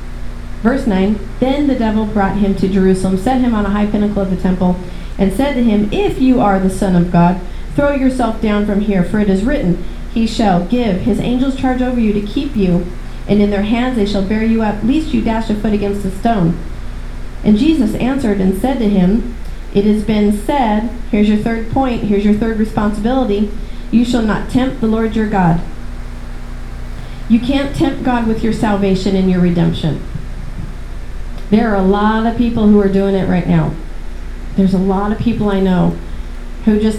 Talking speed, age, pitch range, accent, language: 200 wpm, 40-59, 185-250 Hz, American, English